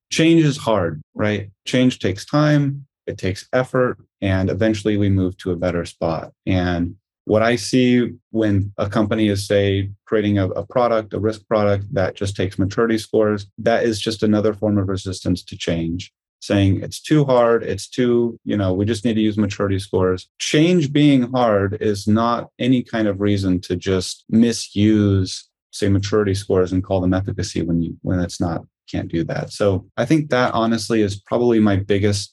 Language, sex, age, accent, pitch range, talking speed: English, male, 30-49, American, 95-120 Hz, 180 wpm